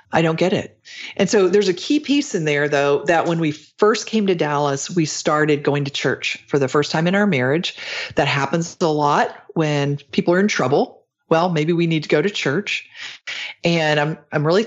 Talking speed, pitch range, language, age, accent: 215 wpm, 140-175 Hz, English, 40-59, American